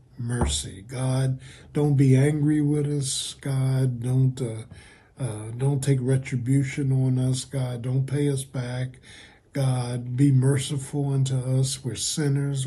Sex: male